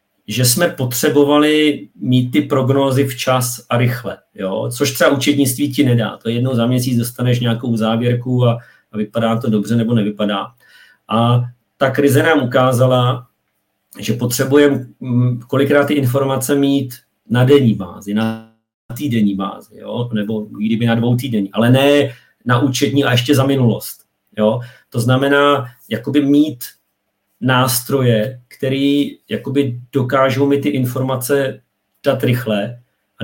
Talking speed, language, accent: 135 wpm, Czech, native